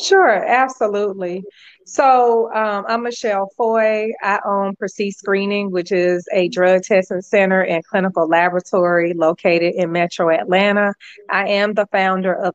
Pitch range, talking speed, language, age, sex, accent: 180-205 Hz, 140 wpm, English, 30-49, female, American